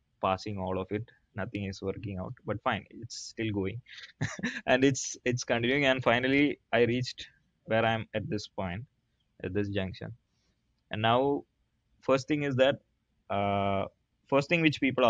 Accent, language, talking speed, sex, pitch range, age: Indian, English, 165 wpm, male, 100-130 Hz, 20-39